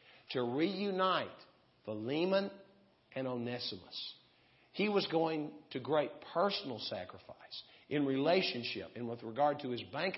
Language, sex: English, male